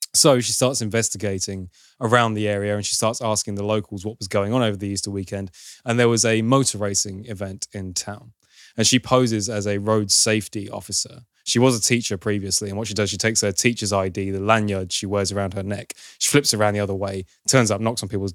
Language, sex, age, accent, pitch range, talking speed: English, male, 20-39, British, 100-115 Hz, 230 wpm